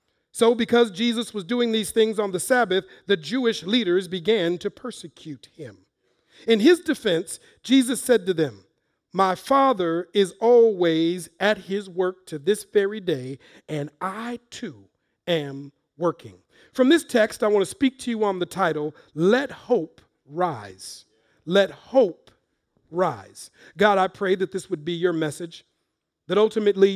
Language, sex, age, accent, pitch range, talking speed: English, male, 50-69, American, 170-225 Hz, 155 wpm